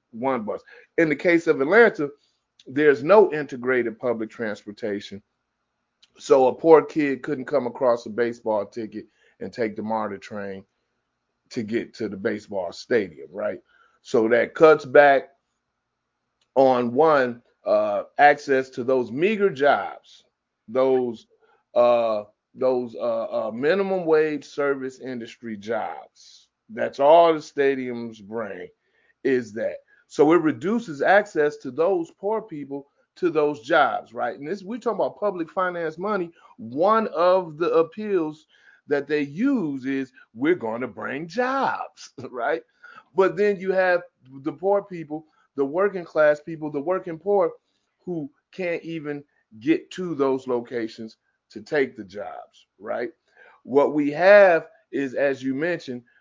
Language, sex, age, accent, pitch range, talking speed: English, male, 30-49, American, 130-190 Hz, 140 wpm